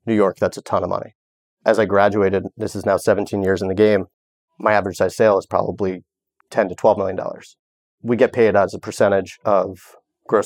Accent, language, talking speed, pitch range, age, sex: American, English, 205 wpm, 95-110 Hz, 30-49, male